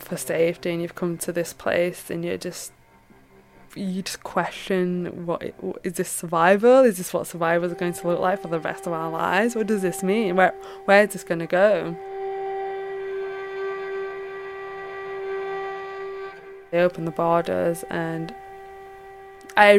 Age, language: 20-39, English